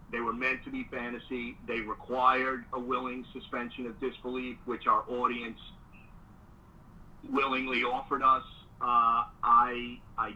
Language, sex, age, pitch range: English, male, 50-69, 115-135 Hz